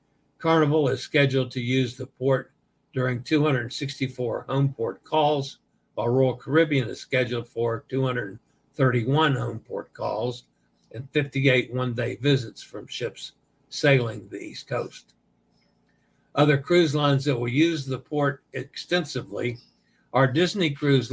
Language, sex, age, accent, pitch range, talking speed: English, male, 60-79, American, 125-145 Hz, 125 wpm